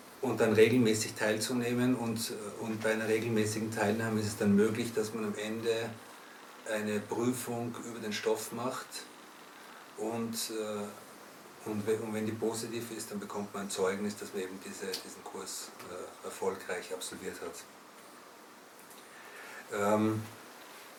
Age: 50-69